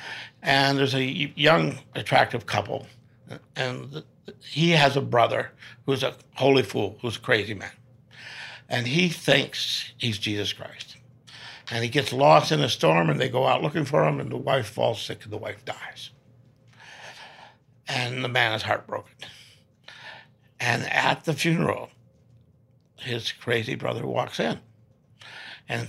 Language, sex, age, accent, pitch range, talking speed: English, male, 60-79, American, 115-135 Hz, 145 wpm